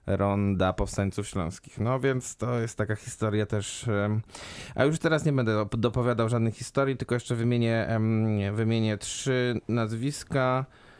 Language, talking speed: Polish, 135 wpm